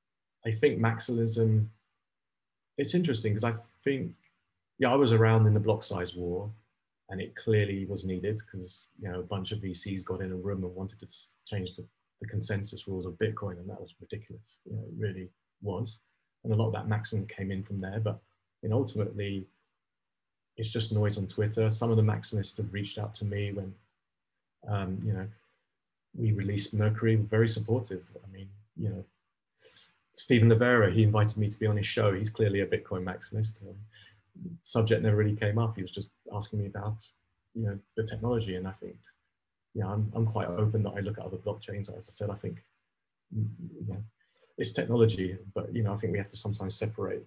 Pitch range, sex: 100-110 Hz, male